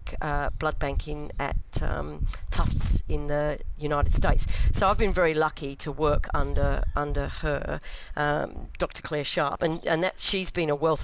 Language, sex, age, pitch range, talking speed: English, female, 40-59, 150-190 Hz, 170 wpm